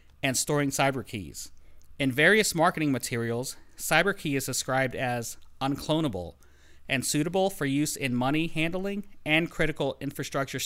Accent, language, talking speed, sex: American, English, 135 wpm, male